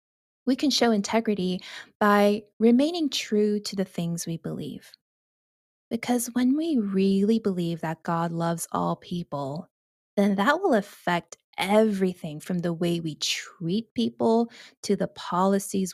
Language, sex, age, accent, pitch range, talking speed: English, female, 20-39, American, 170-225 Hz, 135 wpm